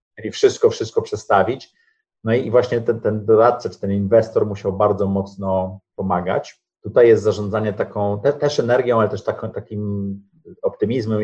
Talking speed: 155 wpm